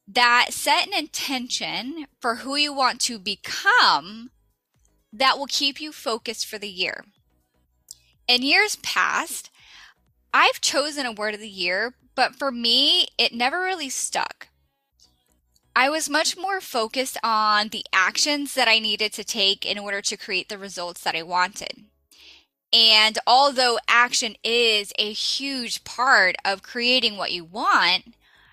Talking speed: 145 wpm